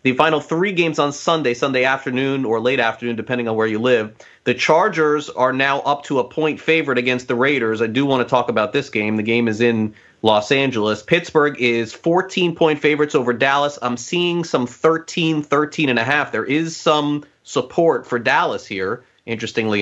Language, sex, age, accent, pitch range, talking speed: English, male, 30-49, American, 115-155 Hz, 190 wpm